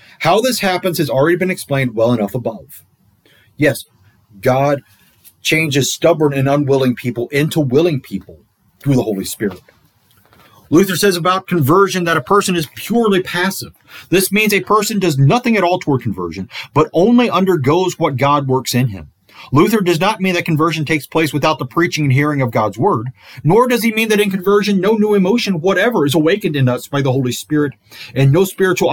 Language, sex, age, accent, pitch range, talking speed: English, male, 30-49, American, 130-185 Hz, 185 wpm